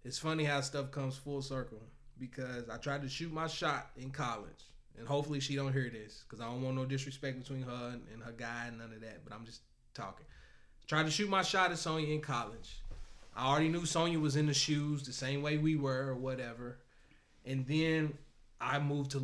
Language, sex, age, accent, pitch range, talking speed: English, male, 20-39, American, 130-155 Hz, 220 wpm